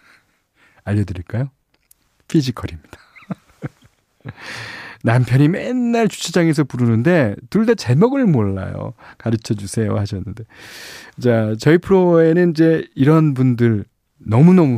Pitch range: 100-155 Hz